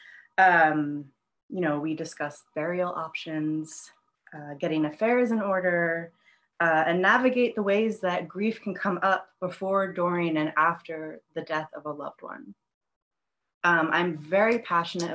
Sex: female